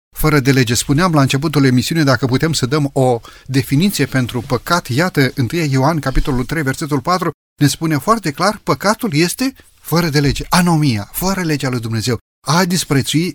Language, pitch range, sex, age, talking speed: Romanian, 130-175 Hz, male, 30-49, 170 wpm